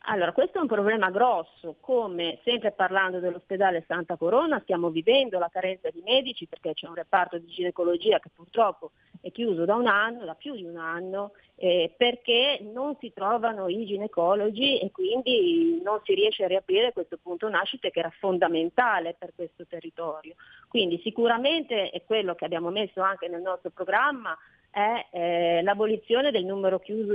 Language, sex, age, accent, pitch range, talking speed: Italian, female, 30-49, native, 170-225 Hz, 170 wpm